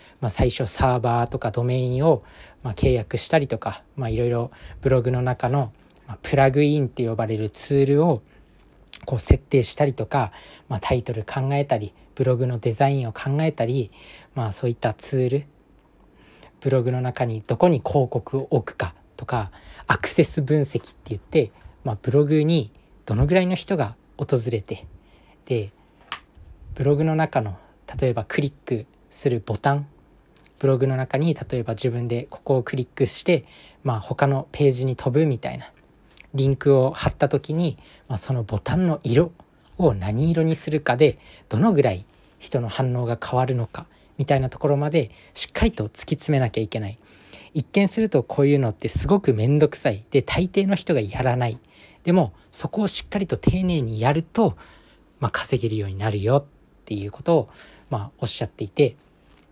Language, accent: Japanese, native